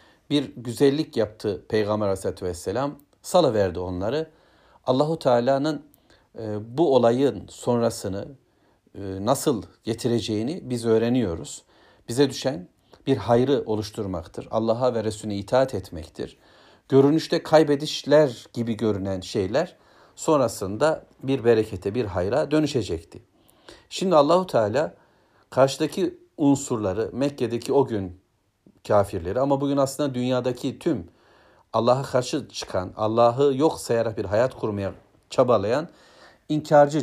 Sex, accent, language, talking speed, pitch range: male, native, Turkish, 100 wpm, 105-140 Hz